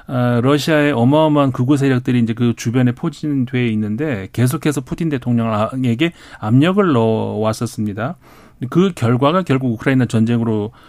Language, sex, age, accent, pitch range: Korean, male, 40-59, native, 120-150 Hz